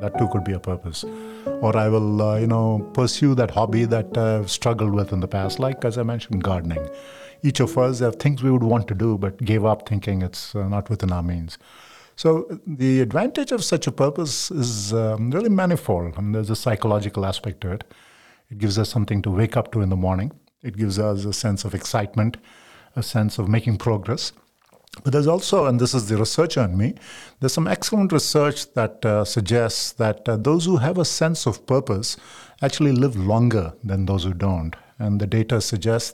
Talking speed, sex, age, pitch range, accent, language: 205 wpm, male, 50-69, 105-130 Hz, Indian, English